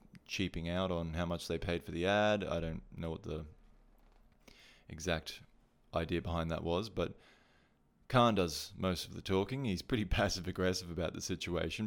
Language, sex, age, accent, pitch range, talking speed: English, male, 20-39, Australian, 85-95 Hz, 170 wpm